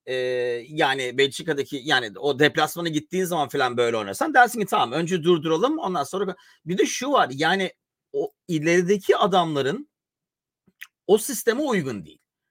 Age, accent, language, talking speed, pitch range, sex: 40-59, native, Turkish, 140 wpm, 150-210 Hz, male